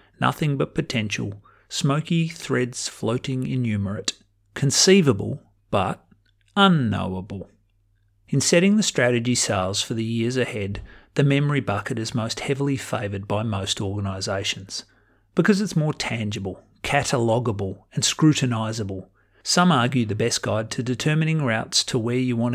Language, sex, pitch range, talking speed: English, male, 100-130 Hz, 130 wpm